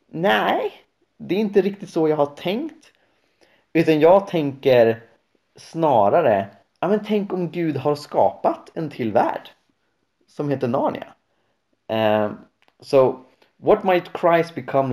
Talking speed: 130 wpm